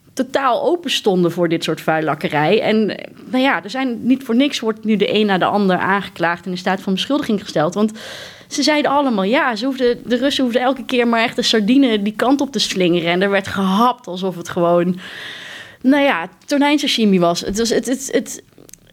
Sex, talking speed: female, 210 wpm